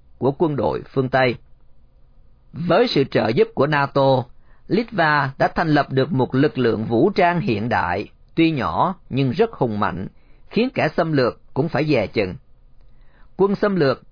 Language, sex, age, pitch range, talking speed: Vietnamese, male, 40-59, 125-165 Hz, 170 wpm